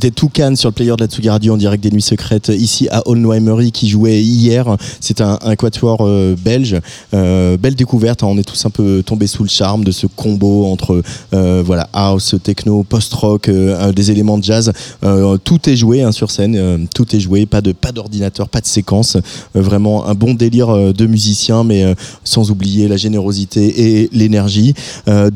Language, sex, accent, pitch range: French, male, French, 100-115 Hz